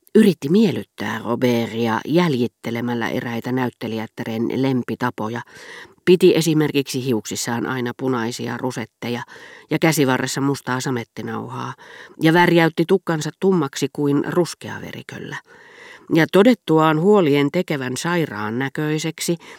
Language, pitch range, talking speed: Finnish, 120-165 Hz, 90 wpm